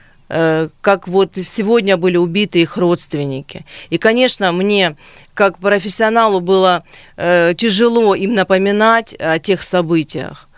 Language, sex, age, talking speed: Russian, female, 30-49, 110 wpm